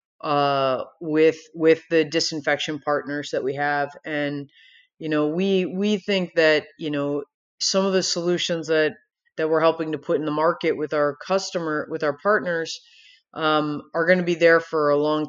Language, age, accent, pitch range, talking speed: English, 30-49, American, 150-175 Hz, 180 wpm